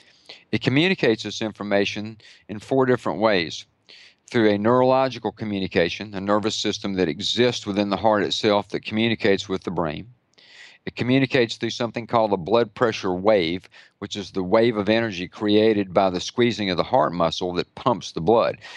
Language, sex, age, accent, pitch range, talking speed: English, male, 50-69, American, 100-120 Hz, 170 wpm